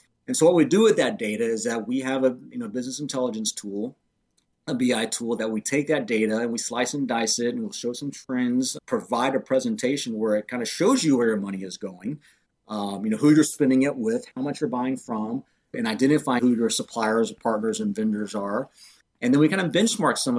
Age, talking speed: 40-59, 235 wpm